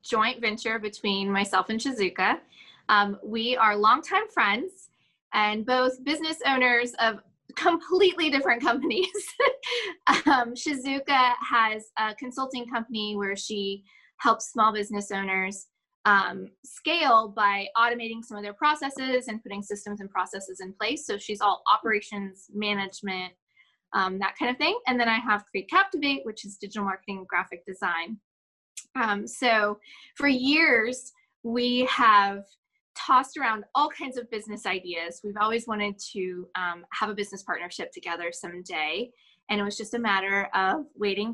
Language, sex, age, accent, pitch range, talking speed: English, female, 20-39, American, 200-255 Hz, 145 wpm